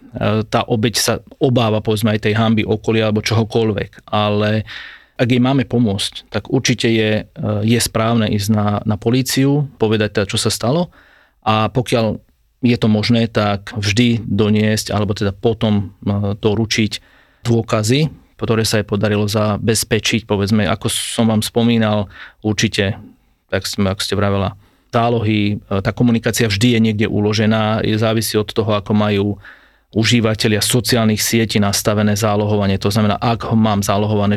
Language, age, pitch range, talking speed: Slovak, 30-49, 105-115 Hz, 145 wpm